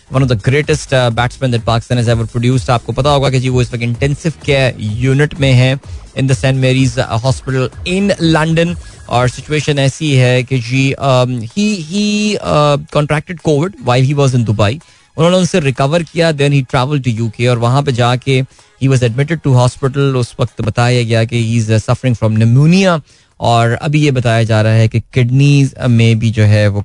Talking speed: 195 wpm